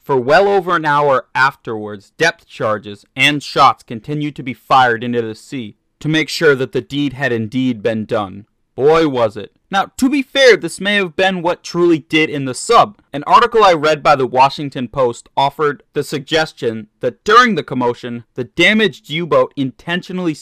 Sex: male